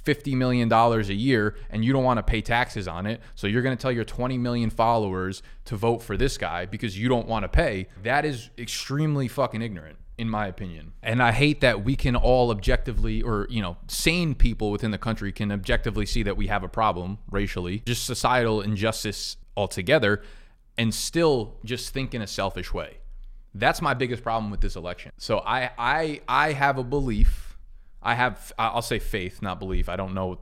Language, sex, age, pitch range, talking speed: English, male, 20-39, 100-125 Hz, 205 wpm